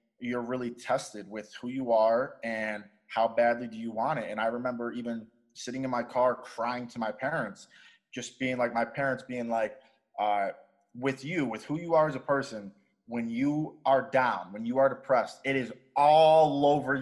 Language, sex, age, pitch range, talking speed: English, male, 20-39, 120-145 Hz, 195 wpm